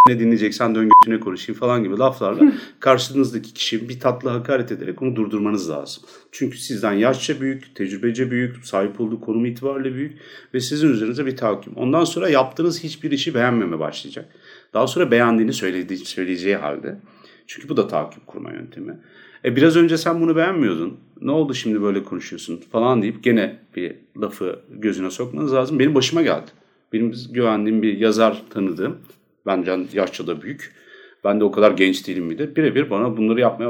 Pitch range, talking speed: 110-140 Hz, 165 wpm